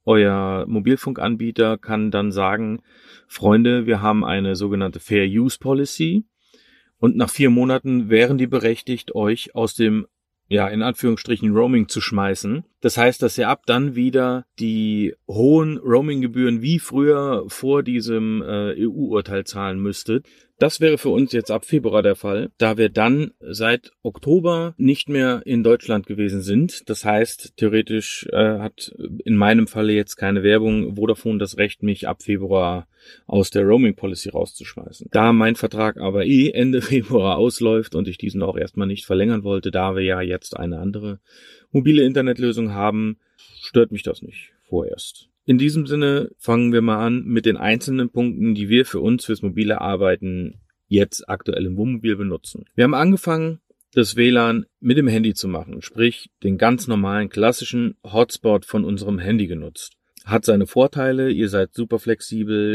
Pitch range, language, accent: 105-125 Hz, German, German